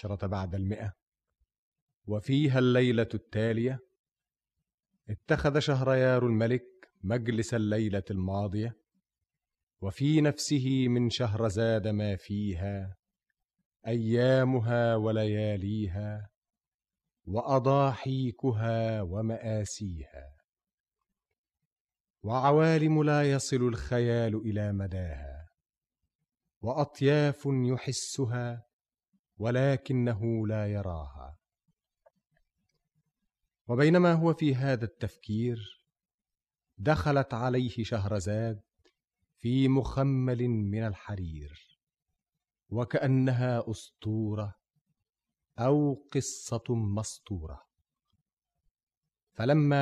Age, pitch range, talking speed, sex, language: 40-59, 105-135 Hz, 60 wpm, male, Arabic